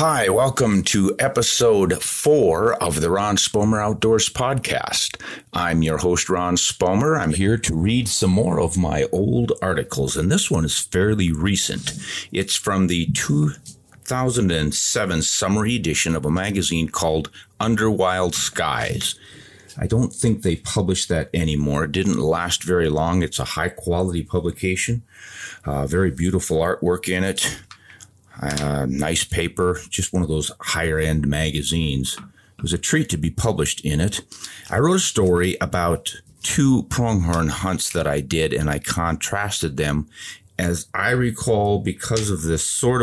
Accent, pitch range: American, 80-105 Hz